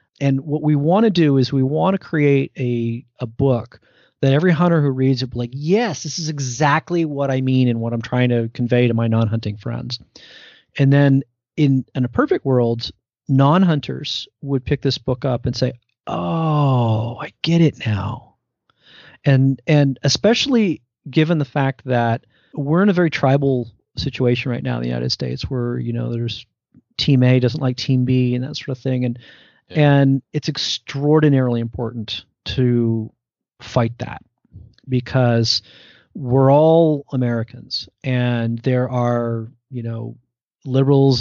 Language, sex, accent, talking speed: English, male, American, 160 wpm